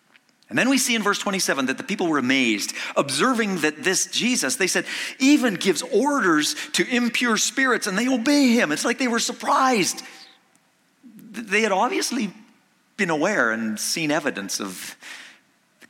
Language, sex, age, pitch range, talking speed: English, male, 40-59, 155-260 Hz, 160 wpm